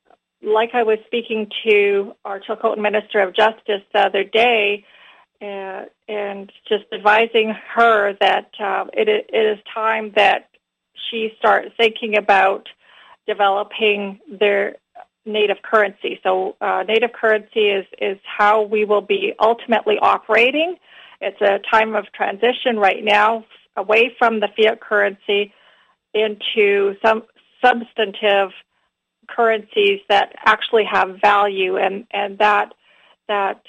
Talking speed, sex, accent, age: 120 wpm, female, American, 40-59